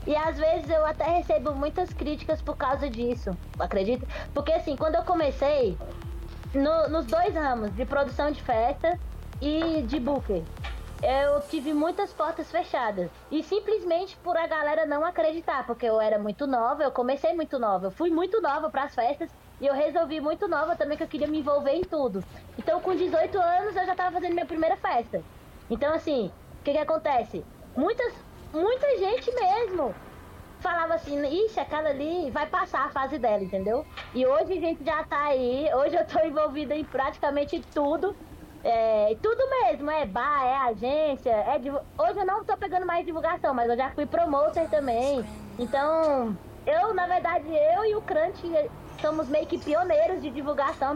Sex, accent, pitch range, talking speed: female, Brazilian, 280-335 Hz, 175 wpm